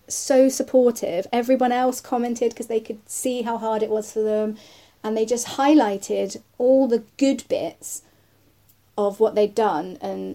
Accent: British